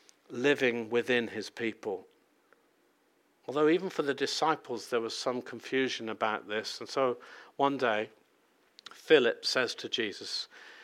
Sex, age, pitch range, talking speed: male, 50-69, 135-190 Hz, 125 wpm